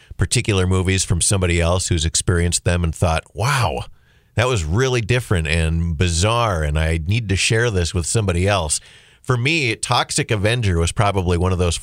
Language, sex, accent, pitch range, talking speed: English, male, American, 85-115 Hz, 180 wpm